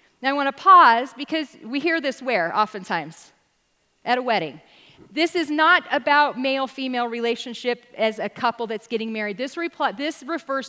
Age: 40-59